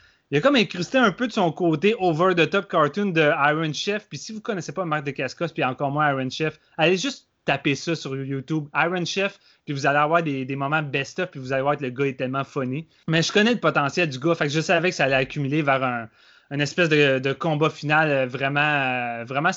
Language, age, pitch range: French, 30-49, 140-175 Hz